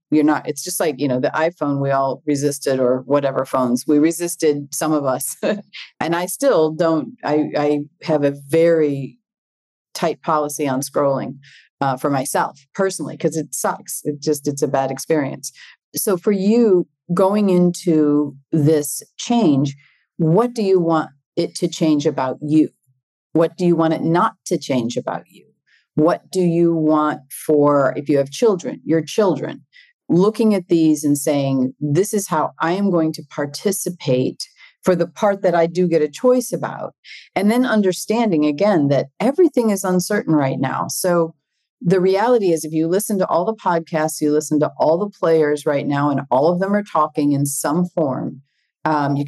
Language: English